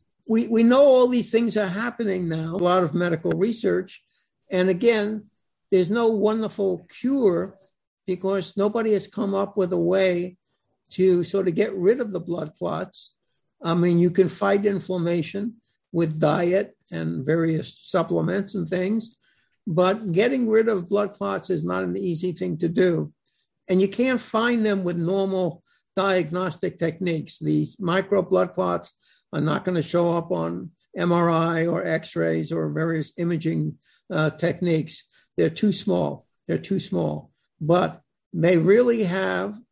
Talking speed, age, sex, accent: 155 wpm, 60-79, male, American